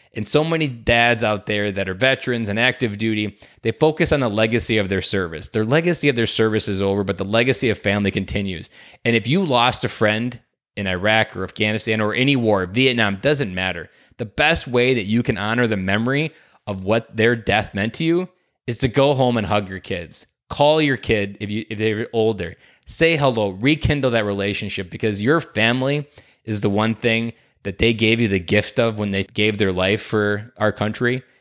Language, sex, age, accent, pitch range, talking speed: English, male, 20-39, American, 100-125 Hz, 205 wpm